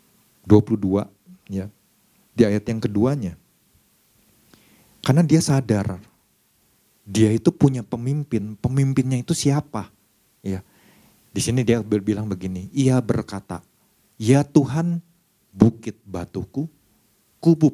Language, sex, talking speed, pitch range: Indonesian, male, 100 wpm, 100-125 Hz